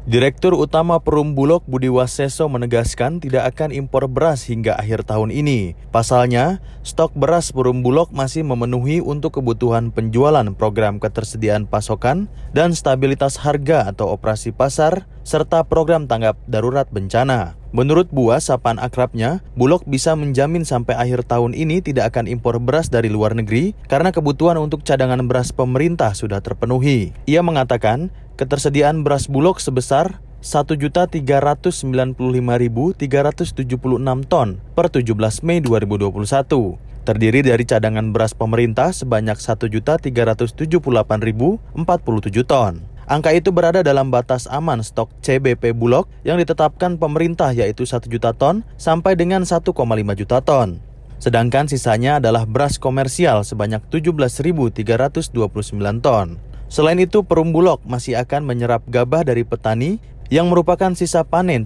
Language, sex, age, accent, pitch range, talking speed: Indonesian, male, 20-39, native, 115-155 Hz, 125 wpm